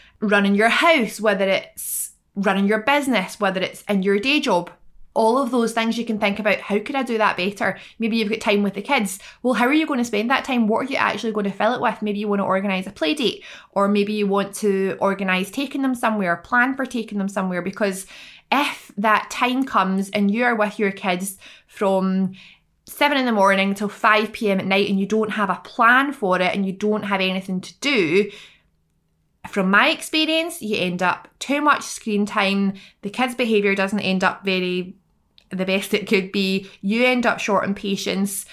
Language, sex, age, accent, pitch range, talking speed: English, female, 20-39, British, 195-235 Hz, 215 wpm